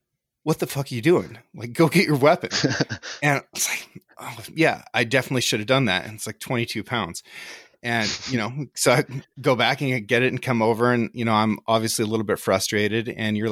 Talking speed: 225 wpm